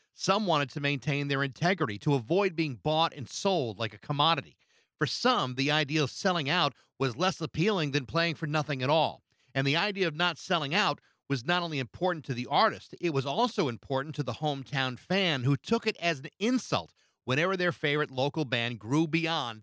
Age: 40-59